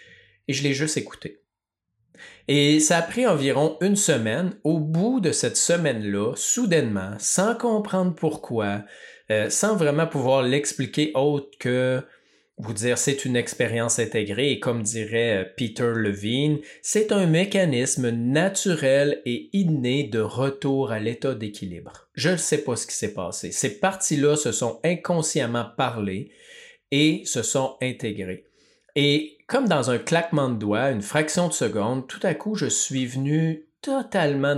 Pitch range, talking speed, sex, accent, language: 120-160 Hz, 150 wpm, male, Canadian, French